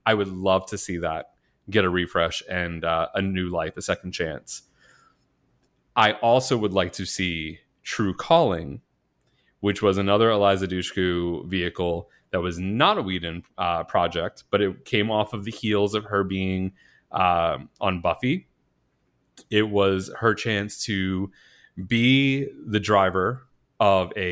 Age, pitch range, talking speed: 30-49, 90-110 Hz, 150 wpm